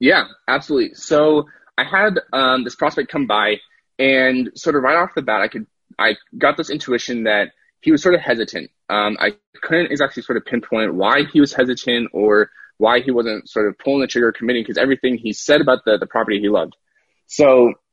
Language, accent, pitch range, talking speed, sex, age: English, American, 115-150 Hz, 210 wpm, male, 20-39